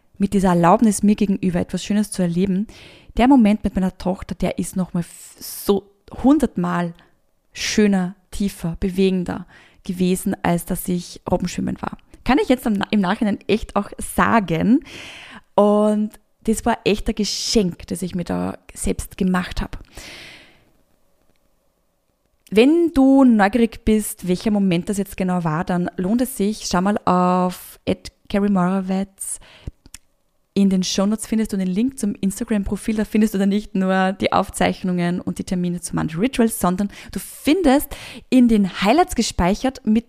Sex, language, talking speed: female, German, 150 wpm